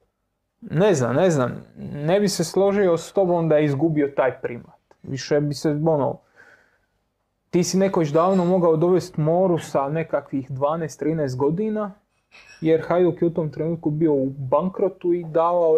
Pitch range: 145-180 Hz